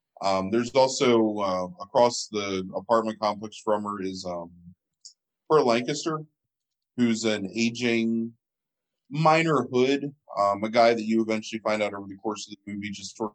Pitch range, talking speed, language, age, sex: 100-120 Hz, 155 wpm, English, 20-39, male